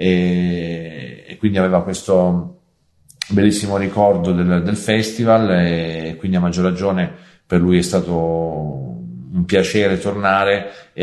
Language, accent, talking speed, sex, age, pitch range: English, Italian, 120 wpm, male, 40-59, 85-95 Hz